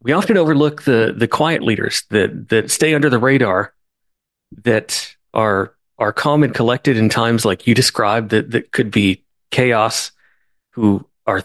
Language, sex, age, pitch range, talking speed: English, male, 40-59, 105-130 Hz, 160 wpm